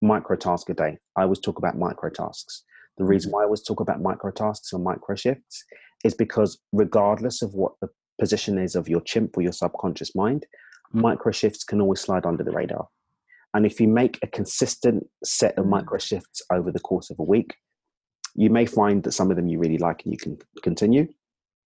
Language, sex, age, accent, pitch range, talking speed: English, male, 30-49, British, 95-110 Hz, 210 wpm